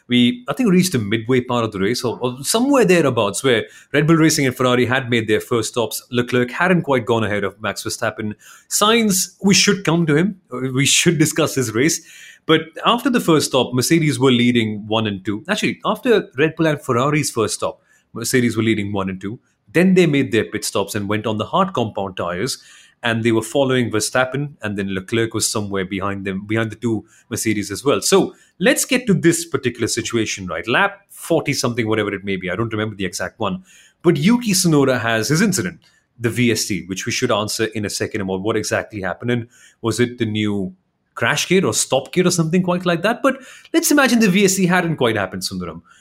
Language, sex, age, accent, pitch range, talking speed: English, male, 30-49, Indian, 110-165 Hz, 215 wpm